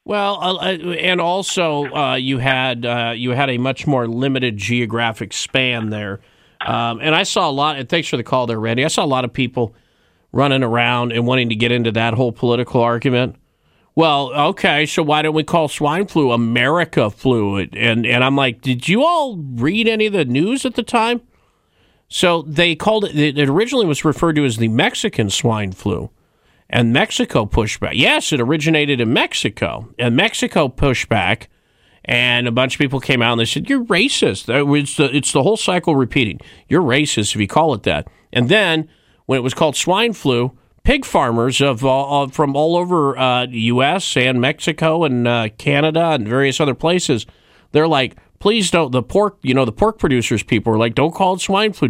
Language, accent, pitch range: English, American, 120-165 Hz